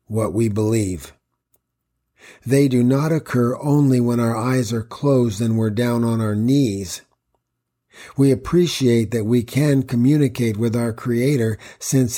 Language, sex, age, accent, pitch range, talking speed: English, male, 50-69, American, 115-135 Hz, 145 wpm